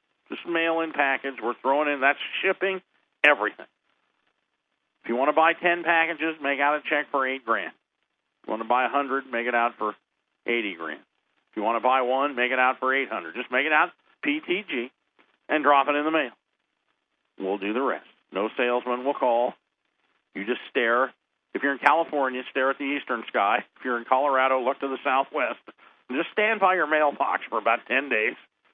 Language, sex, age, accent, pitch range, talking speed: English, male, 50-69, American, 130-180 Hz, 205 wpm